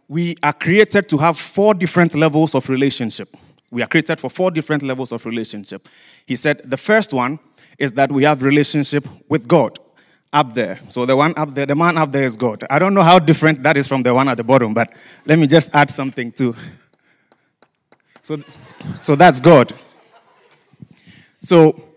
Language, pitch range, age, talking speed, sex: English, 130-160 Hz, 30-49, 190 wpm, male